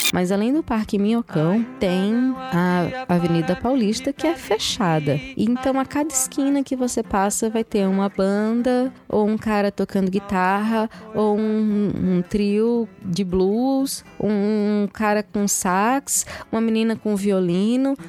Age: 20-39